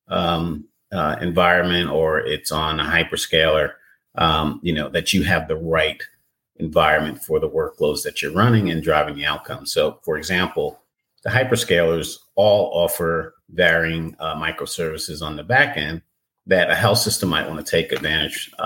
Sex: male